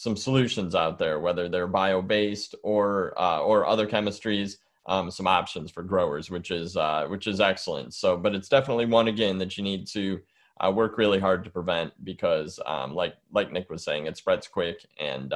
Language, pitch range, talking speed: English, 95-110 Hz, 195 wpm